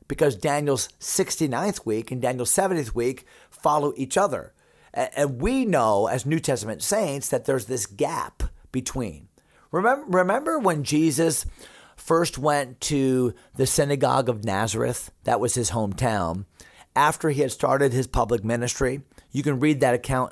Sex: male